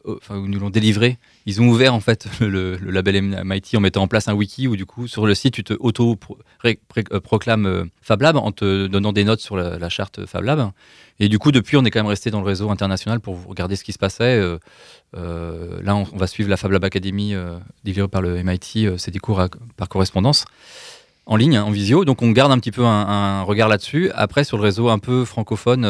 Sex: male